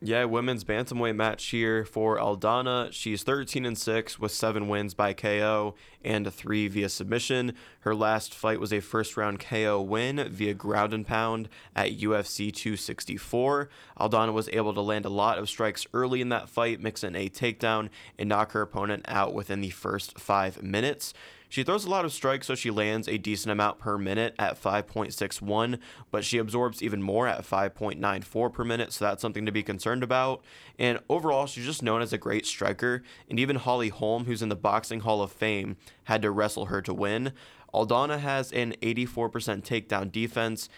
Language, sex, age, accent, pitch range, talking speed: English, male, 20-39, American, 105-115 Hz, 190 wpm